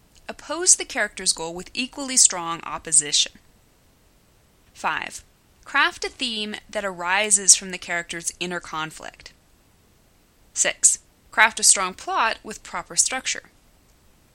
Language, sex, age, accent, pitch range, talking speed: English, female, 20-39, American, 170-245 Hz, 115 wpm